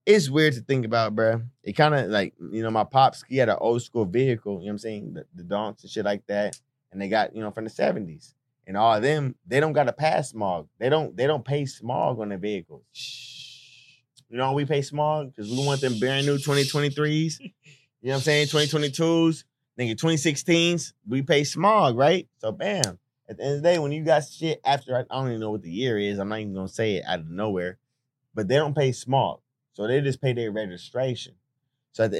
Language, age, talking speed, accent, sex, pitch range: English, 20-39, 240 wpm, American, male, 120-145 Hz